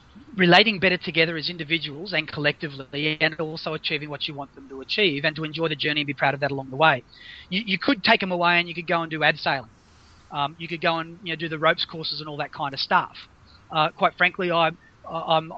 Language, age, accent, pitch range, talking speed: English, 30-49, Australian, 150-185 Hz, 240 wpm